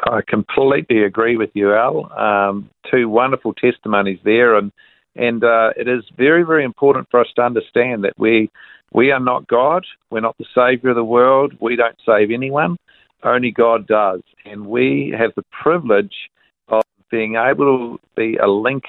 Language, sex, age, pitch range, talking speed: English, male, 50-69, 105-130 Hz, 175 wpm